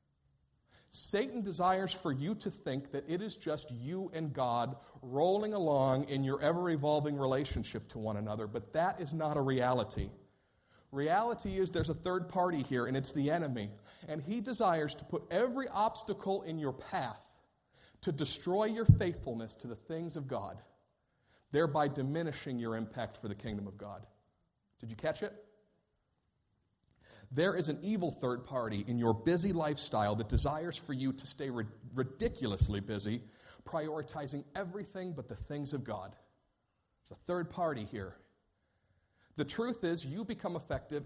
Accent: American